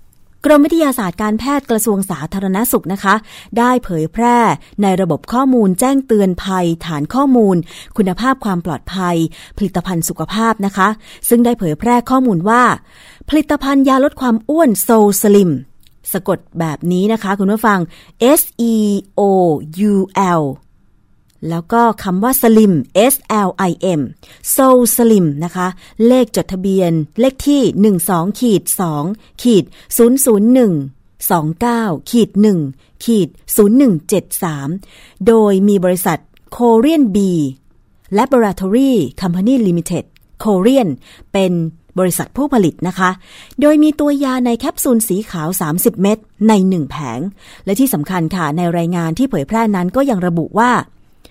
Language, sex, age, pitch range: Thai, female, 30-49, 175-235 Hz